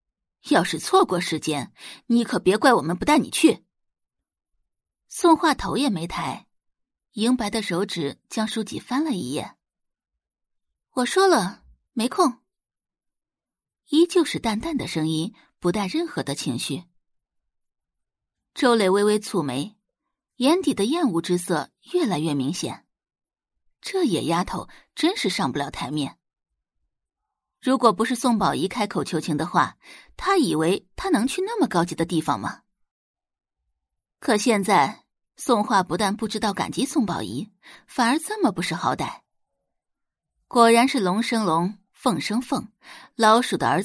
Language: Chinese